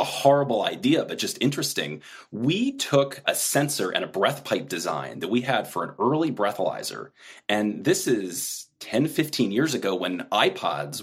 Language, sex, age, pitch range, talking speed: English, male, 30-49, 115-140 Hz, 170 wpm